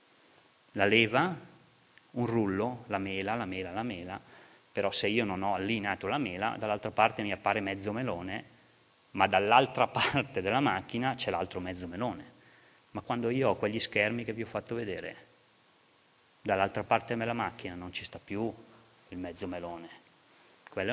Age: 30-49